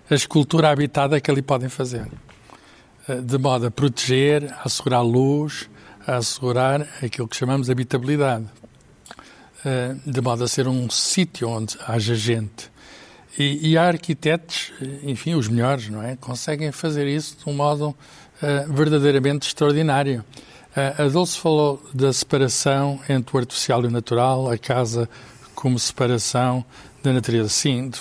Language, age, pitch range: Portuguese, 60-79, 120-145 Hz